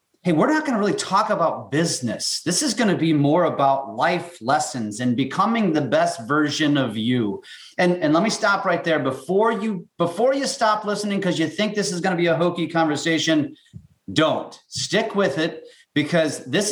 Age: 30-49